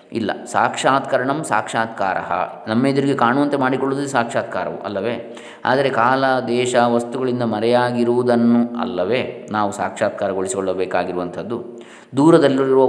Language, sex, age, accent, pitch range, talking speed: Kannada, male, 20-39, native, 115-135 Hz, 80 wpm